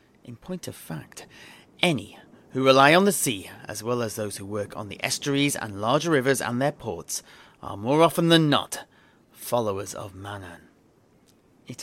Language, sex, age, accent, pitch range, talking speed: English, male, 30-49, British, 105-140 Hz, 170 wpm